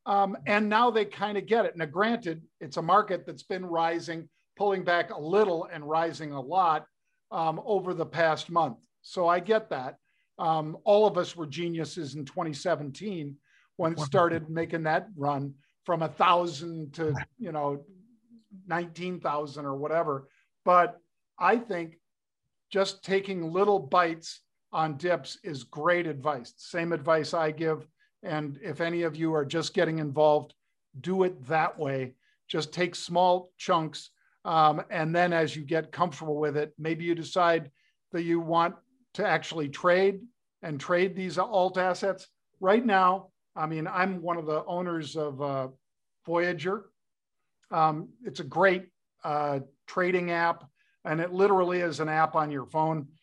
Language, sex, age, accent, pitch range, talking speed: English, male, 50-69, American, 155-185 Hz, 155 wpm